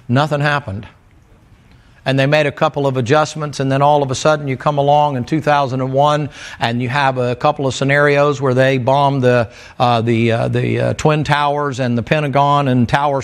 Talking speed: 180 wpm